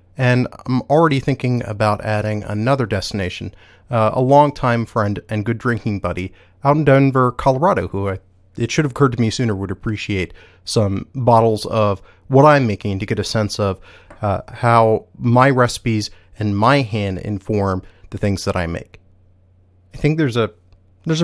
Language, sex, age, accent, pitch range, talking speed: English, male, 30-49, American, 95-135 Hz, 170 wpm